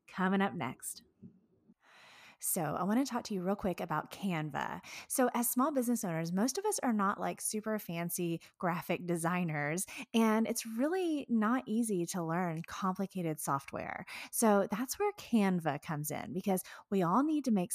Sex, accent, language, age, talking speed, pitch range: female, American, English, 30-49, 170 wpm, 180-255 Hz